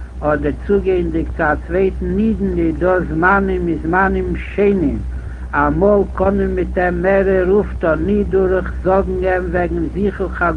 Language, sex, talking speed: Hebrew, male, 130 wpm